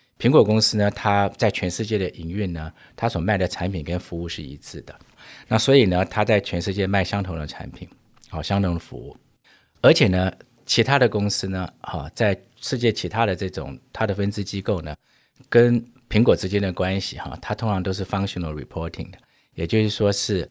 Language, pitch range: Chinese, 85-105 Hz